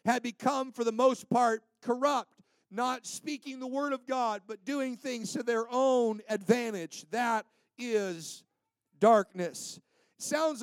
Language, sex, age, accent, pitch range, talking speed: English, male, 50-69, American, 220-260 Hz, 135 wpm